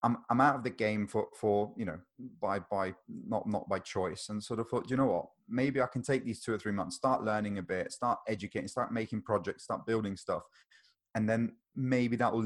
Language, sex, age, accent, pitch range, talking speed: English, male, 30-49, British, 105-125 Hz, 235 wpm